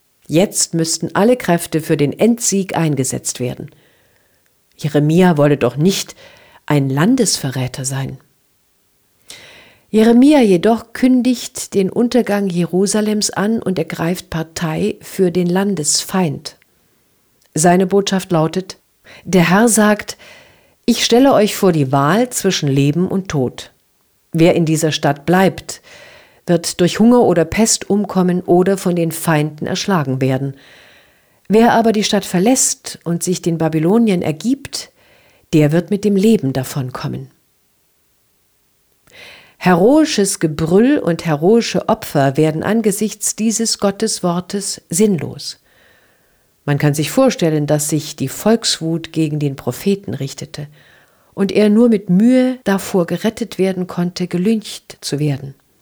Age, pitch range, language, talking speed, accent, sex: 50-69, 150-210 Hz, German, 120 wpm, German, female